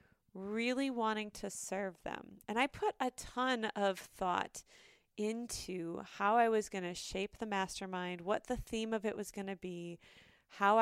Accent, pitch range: American, 195-255 Hz